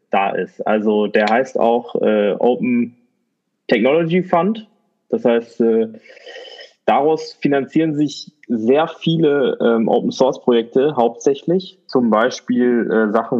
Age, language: 20-39, German